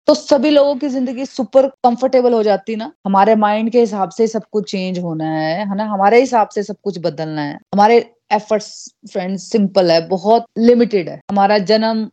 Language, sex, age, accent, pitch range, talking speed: Hindi, female, 30-49, native, 185-235 Hz, 195 wpm